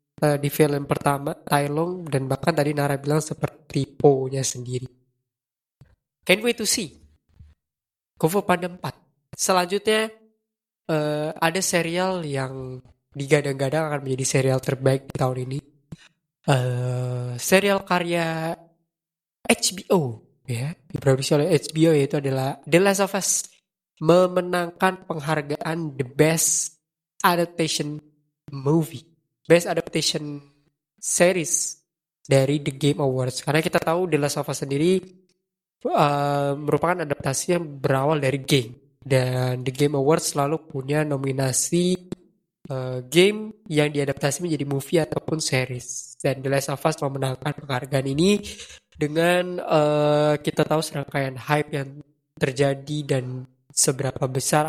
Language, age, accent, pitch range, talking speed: Indonesian, 20-39, native, 135-165 Hz, 120 wpm